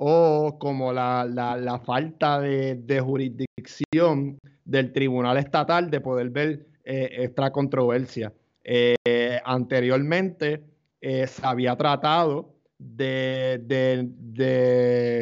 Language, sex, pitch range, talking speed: Spanish, male, 125-150 Hz, 105 wpm